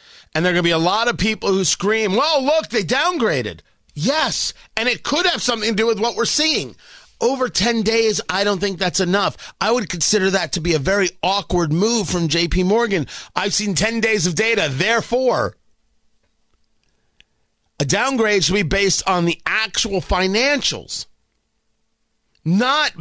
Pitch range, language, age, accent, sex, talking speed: 160-220 Hz, English, 40-59, American, male, 170 wpm